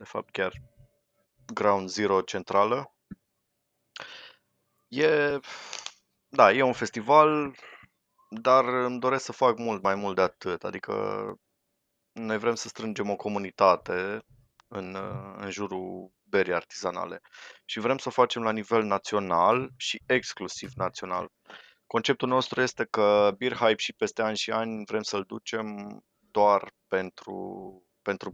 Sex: male